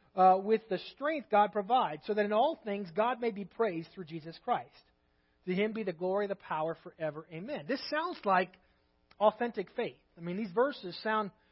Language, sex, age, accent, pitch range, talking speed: English, male, 40-59, American, 180-260 Hz, 195 wpm